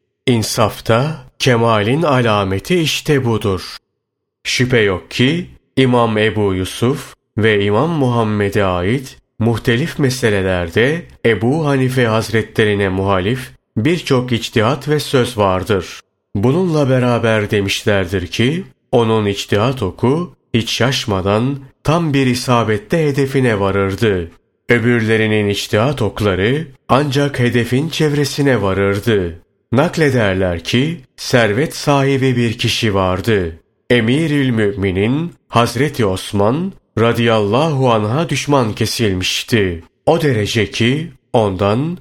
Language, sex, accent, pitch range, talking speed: Turkish, male, native, 105-135 Hz, 95 wpm